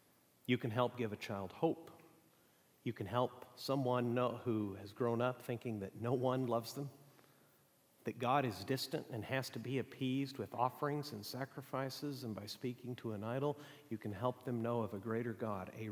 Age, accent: 50-69, American